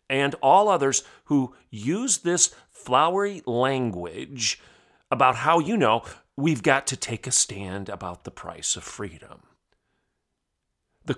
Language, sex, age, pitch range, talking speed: English, male, 40-59, 125-160 Hz, 130 wpm